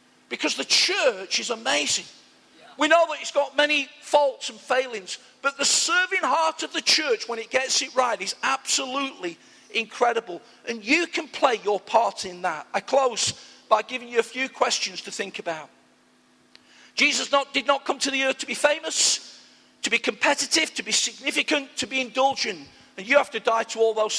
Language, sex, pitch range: English, male, 210-275 Hz